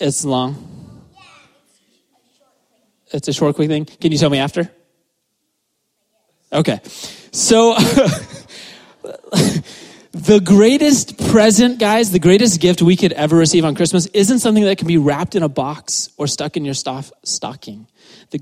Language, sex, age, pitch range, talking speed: English, male, 30-49, 150-210 Hz, 140 wpm